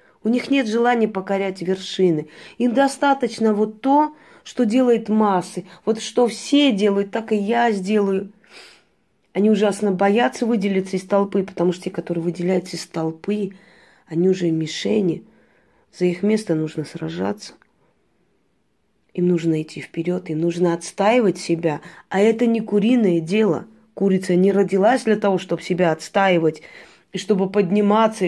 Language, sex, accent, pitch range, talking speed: Russian, female, native, 180-220 Hz, 140 wpm